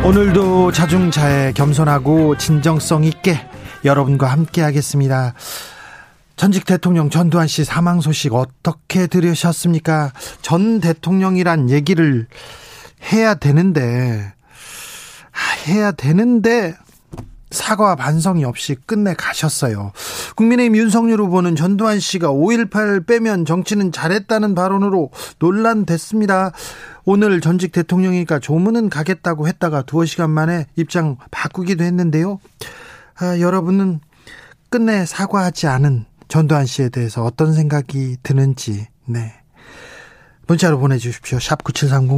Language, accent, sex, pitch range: Korean, native, male, 145-190 Hz